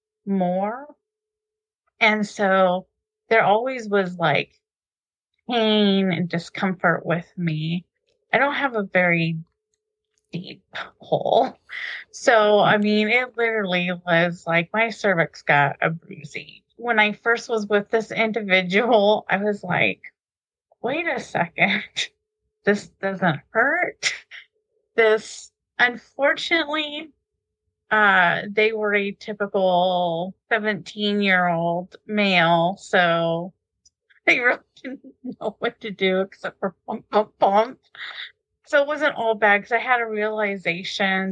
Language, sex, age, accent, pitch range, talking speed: English, female, 30-49, American, 180-230 Hz, 120 wpm